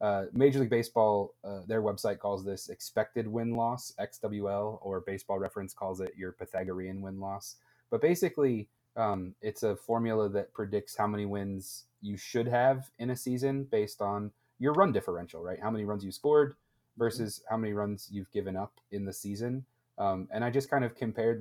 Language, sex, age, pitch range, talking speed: English, male, 30-49, 100-120 Hz, 190 wpm